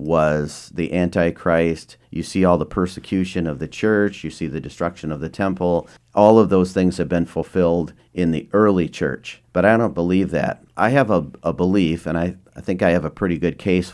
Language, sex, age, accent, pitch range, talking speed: English, male, 50-69, American, 85-100 Hz, 210 wpm